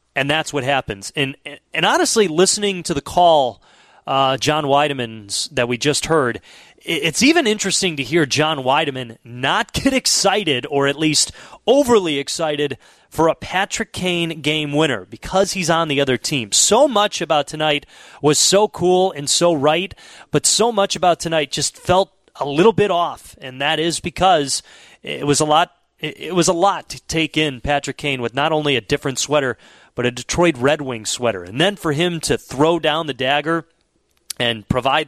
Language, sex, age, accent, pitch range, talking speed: English, male, 30-49, American, 115-160 Hz, 180 wpm